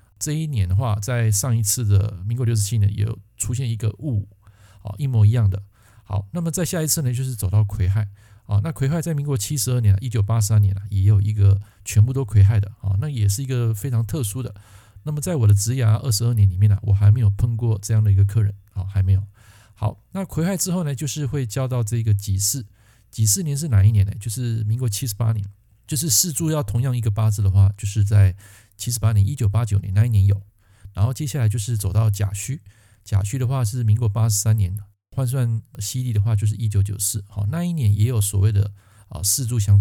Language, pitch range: Chinese, 100-125 Hz